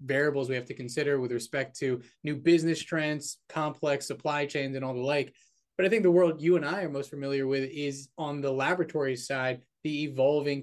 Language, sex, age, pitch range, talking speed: English, male, 20-39, 130-155 Hz, 210 wpm